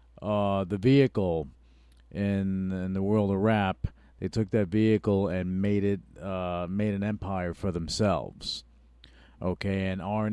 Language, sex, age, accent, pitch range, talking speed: English, male, 40-59, American, 95-115 Hz, 140 wpm